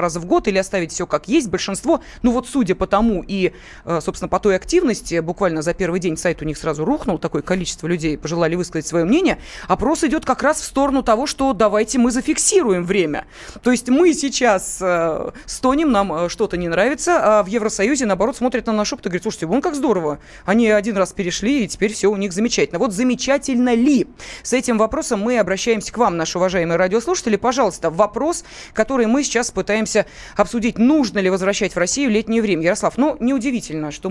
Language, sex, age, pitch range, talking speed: Russian, female, 30-49, 180-255 Hz, 195 wpm